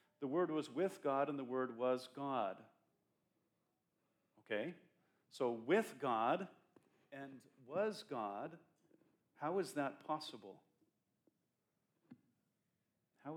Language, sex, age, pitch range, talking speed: English, male, 40-59, 120-145 Hz, 100 wpm